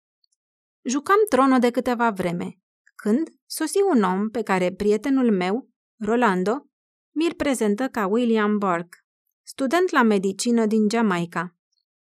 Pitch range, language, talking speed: 195-265 Hz, Romanian, 120 wpm